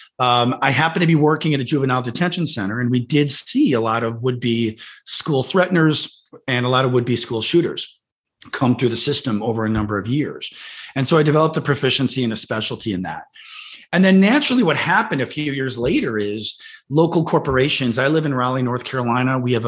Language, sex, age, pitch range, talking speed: English, male, 40-59, 120-150 Hz, 205 wpm